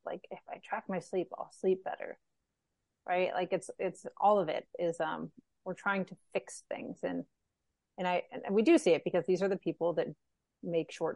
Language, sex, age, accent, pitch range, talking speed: English, female, 30-49, American, 165-190 Hz, 210 wpm